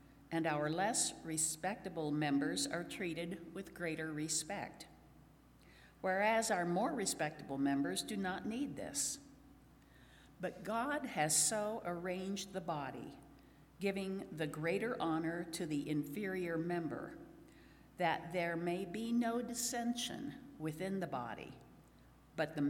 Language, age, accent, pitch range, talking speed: English, 50-69, American, 150-190 Hz, 120 wpm